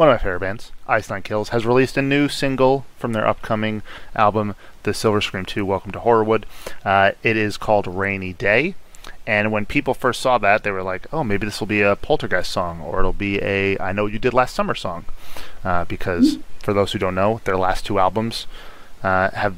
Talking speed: 215 wpm